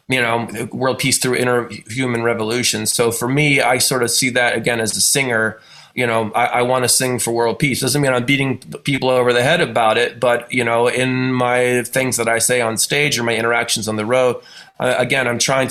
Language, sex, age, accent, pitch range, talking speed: English, male, 20-39, American, 115-130 Hz, 230 wpm